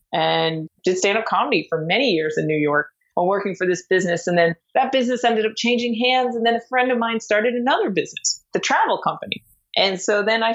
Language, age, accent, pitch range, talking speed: English, 30-49, American, 185-235 Hz, 220 wpm